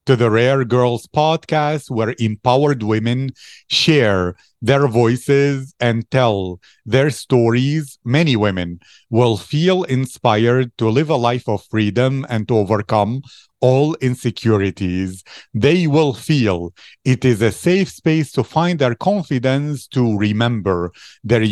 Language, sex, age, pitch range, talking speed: English, male, 40-59, 110-140 Hz, 130 wpm